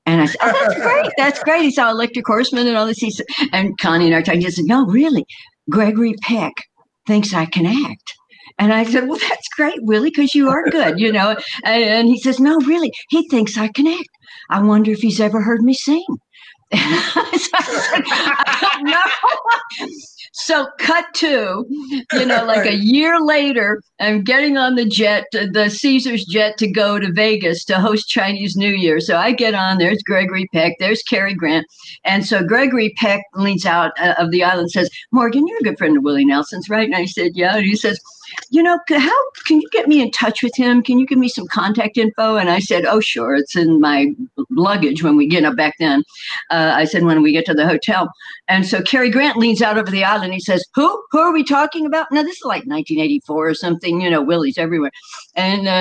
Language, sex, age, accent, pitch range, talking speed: English, female, 60-79, American, 185-280 Hz, 220 wpm